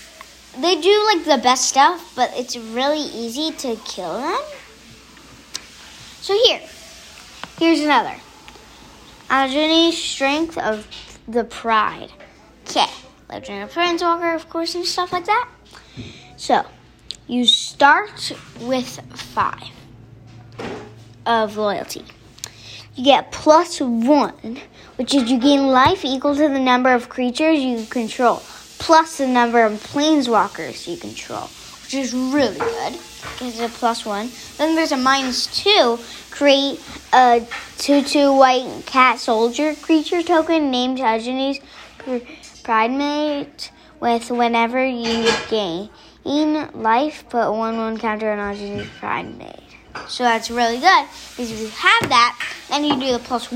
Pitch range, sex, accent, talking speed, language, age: 230-300 Hz, female, American, 130 wpm, English, 10-29